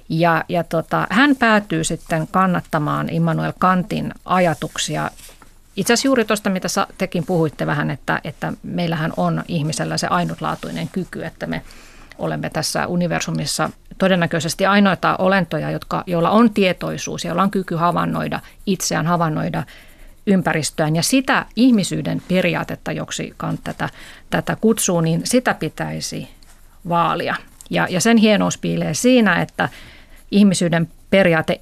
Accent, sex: native, female